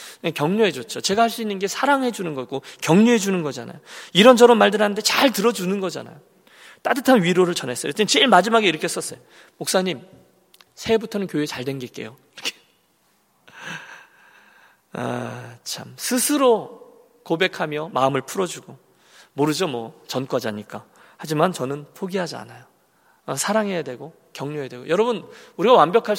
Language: Korean